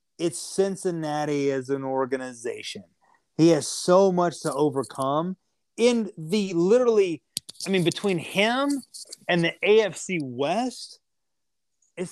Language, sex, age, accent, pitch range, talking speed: English, male, 30-49, American, 140-180 Hz, 115 wpm